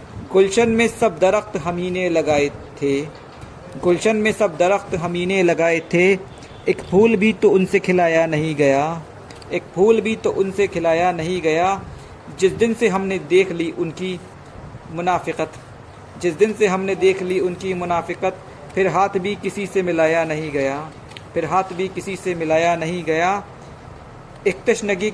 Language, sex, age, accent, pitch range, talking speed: Hindi, male, 50-69, native, 155-195 Hz, 155 wpm